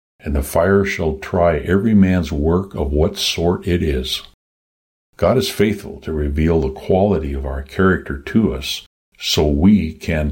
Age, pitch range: 60-79, 75-95 Hz